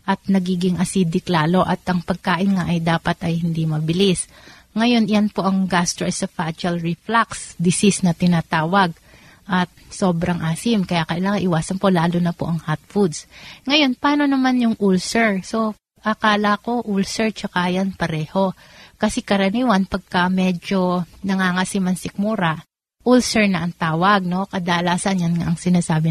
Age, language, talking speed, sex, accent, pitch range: 30-49, Filipino, 140 wpm, female, native, 180-215 Hz